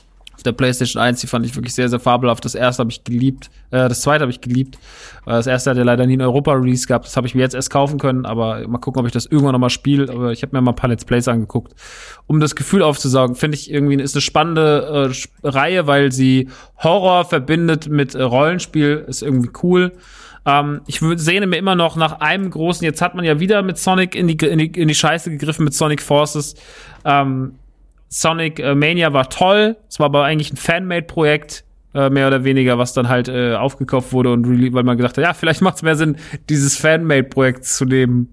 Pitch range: 130-160 Hz